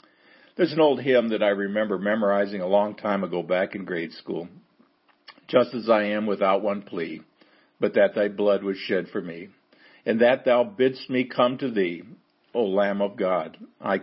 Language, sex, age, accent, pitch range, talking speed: English, male, 50-69, American, 105-125 Hz, 190 wpm